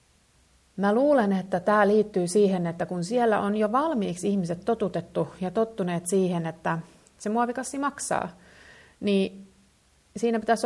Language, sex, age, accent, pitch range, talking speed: Finnish, female, 30-49, native, 170-220 Hz, 135 wpm